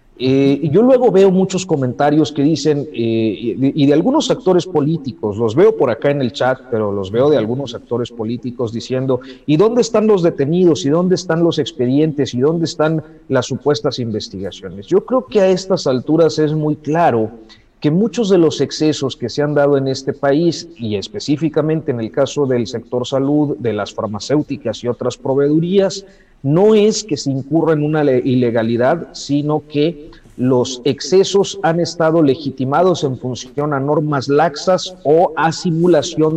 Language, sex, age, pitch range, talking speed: Spanish, male, 40-59, 125-160 Hz, 170 wpm